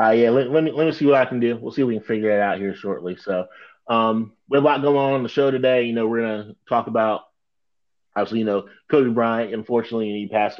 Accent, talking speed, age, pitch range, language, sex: American, 270 wpm, 30-49, 100-130 Hz, English, male